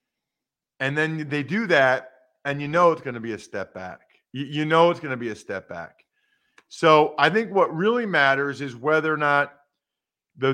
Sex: male